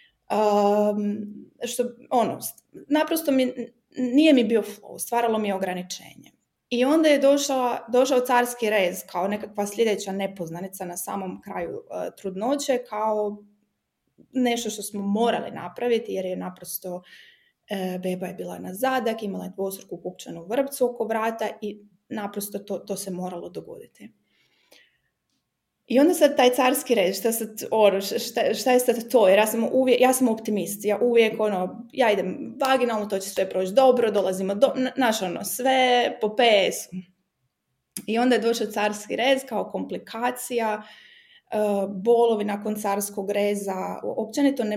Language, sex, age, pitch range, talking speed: Croatian, female, 20-39, 195-245 Hz, 140 wpm